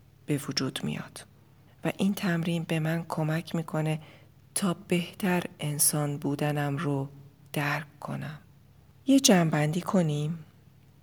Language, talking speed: Persian, 110 wpm